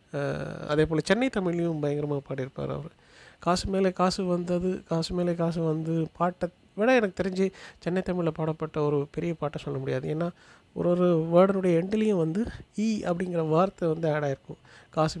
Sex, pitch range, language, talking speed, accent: male, 145-180 Hz, Tamil, 145 wpm, native